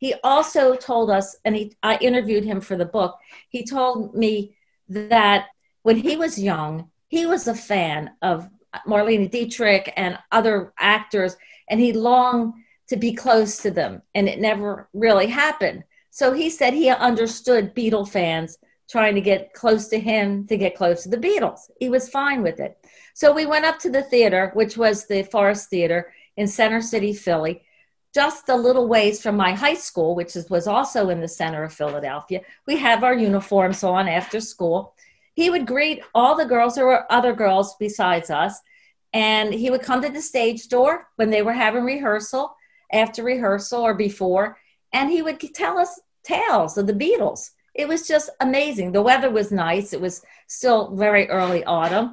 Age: 50-69